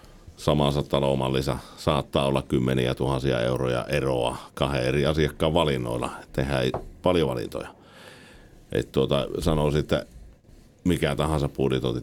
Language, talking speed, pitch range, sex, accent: Finnish, 110 wpm, 65-80 Hz, male, native